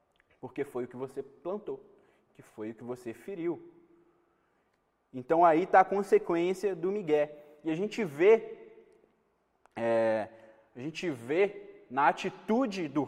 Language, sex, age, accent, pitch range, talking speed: Gujarati, male, 20-39, Brazilian, 155-210 Hz, 140 wpm